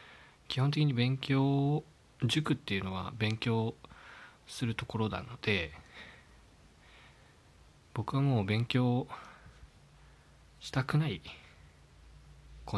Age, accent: 20-39, native